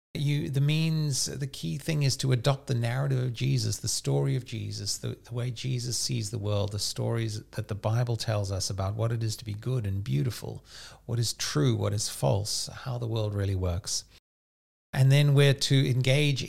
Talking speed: 205 wpm